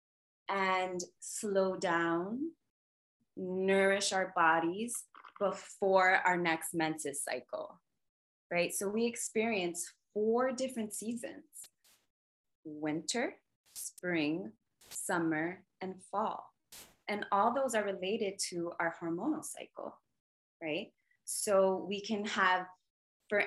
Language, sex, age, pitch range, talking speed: English, female, 20-39, 170-205 Hz, 95 wpm